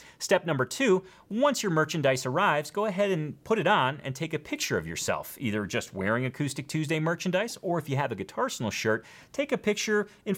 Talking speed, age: 210 wpm, 30-49